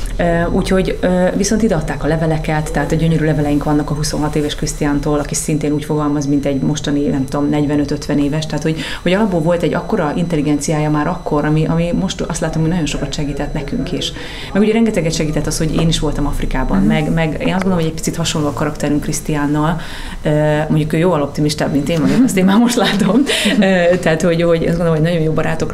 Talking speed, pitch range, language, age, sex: 205 wpm, 145-170 Hz, Hungarian, 30-49, female